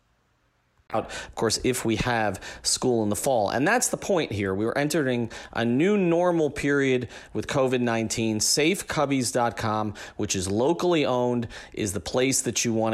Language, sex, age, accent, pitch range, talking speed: English, male, 40-59, American, 105-135 Hz, 160 wpm